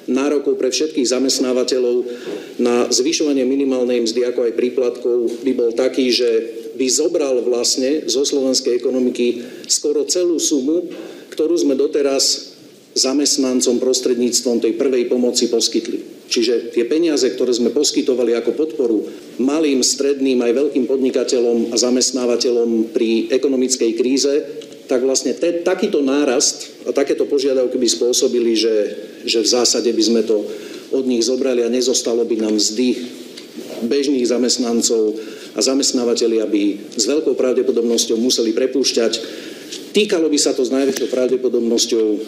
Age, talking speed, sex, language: 40-59, 130 wpm, male, Slovak